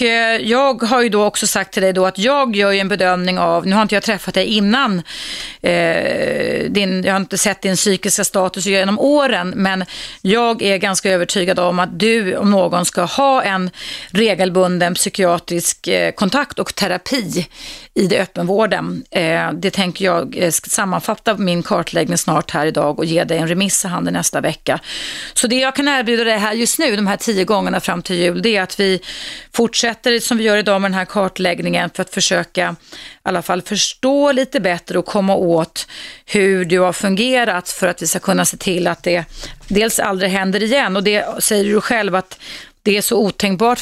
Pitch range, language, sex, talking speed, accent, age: 180-220 Hz, Swedish, female, 195 wpm, native, 30-49